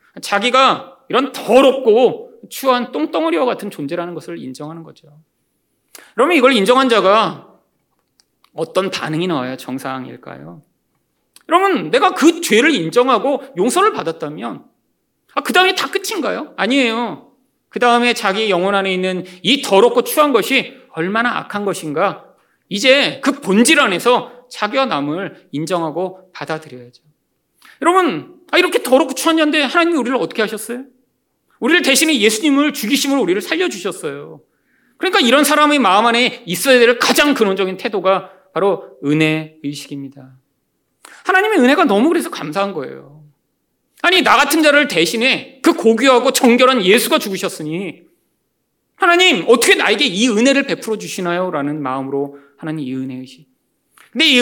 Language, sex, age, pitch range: Korean, male, 40-59, 170-280 Hz